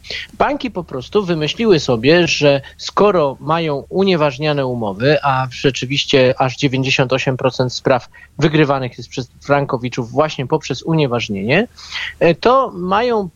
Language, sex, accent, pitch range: Polish, male, native, 140-185 Hz